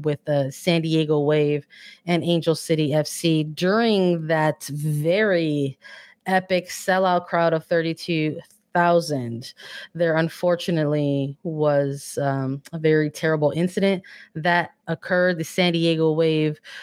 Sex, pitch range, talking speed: female, 150-175 Hz, 110 wpm